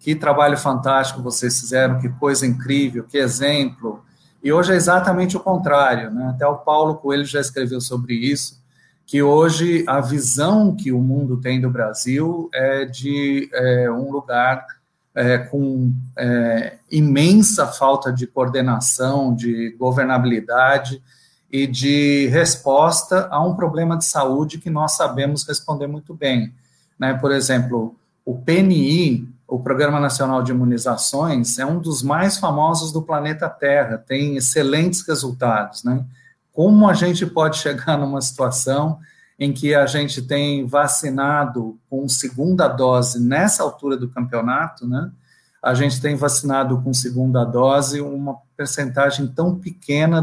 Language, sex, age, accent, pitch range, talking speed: Portuguese, male, 40-59, Brazilian, 130-150 Hz, 140 wpm